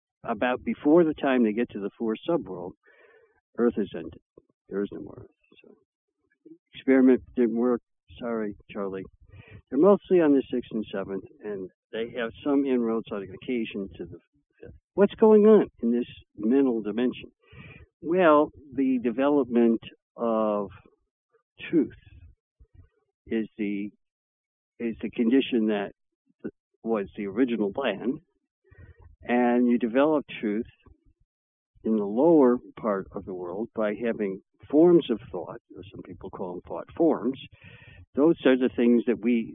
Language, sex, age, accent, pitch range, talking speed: English, male, 60-79, American, 105-140 Hz, 140 wpm